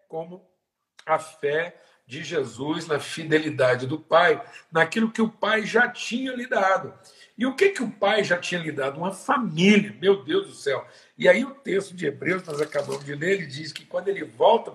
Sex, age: male, 60-79